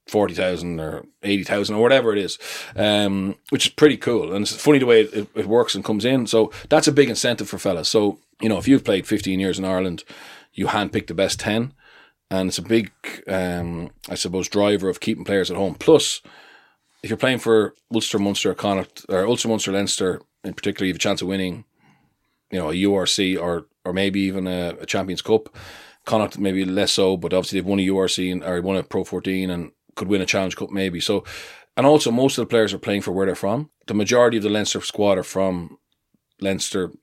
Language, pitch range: English, 95-110 Hz